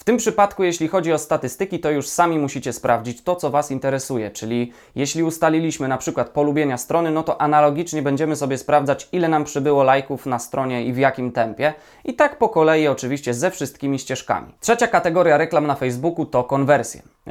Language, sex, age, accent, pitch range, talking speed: Polish, male, 20-39, native, 130-165 Hz, 185 wpm